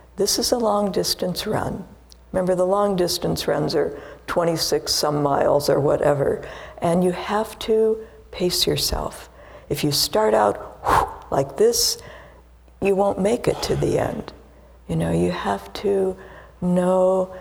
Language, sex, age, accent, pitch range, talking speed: English, female, 60-79, American, 165-205 Hz, 140 wpm